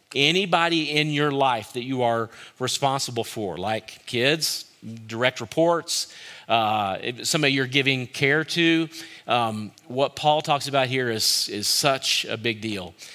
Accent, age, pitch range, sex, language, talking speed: American, 40-59, 115-145 Hz, male, English, 140 wpm